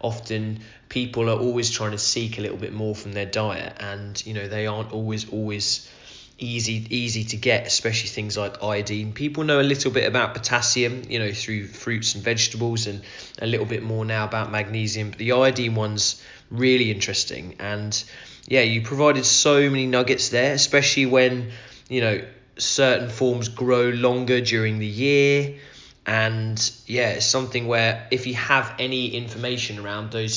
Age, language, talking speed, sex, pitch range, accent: 20-39, English, 170 wpm, male, 105-125 Hz, British